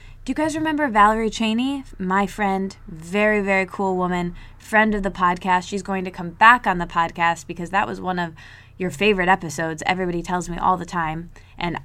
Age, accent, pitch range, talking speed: 20-39, American, 165-210 Hz, 195 wpm